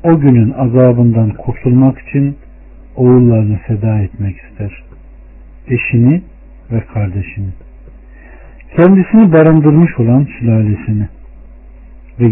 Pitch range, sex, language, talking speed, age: 95-125 Hz, male, Turkish, 85 wpm, 60-79